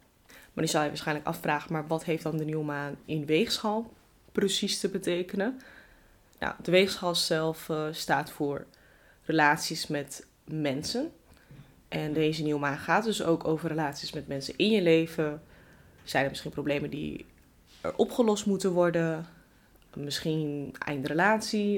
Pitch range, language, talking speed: 150-185 Hz, Dutch, 145 wpm